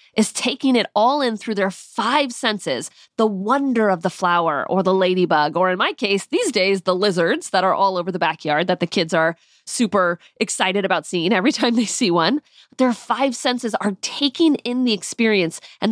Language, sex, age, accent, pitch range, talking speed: English, female, 30-49, American, 185-245 Hz, 200 wpm